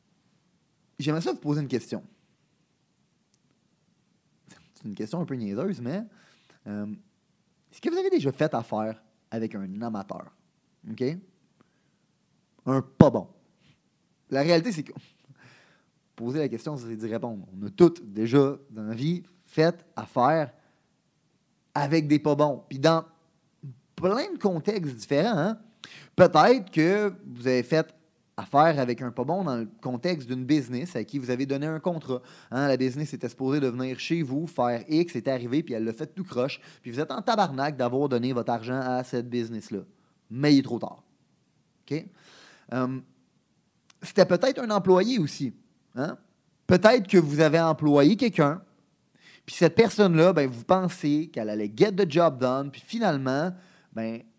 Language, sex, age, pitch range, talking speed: French, male, 30-49, 125-175 Hz, 165 wpm